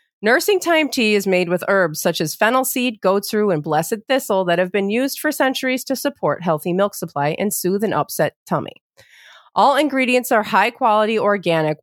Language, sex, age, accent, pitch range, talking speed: English, female, 30-49, American, 165-245 Hz, 190 wpm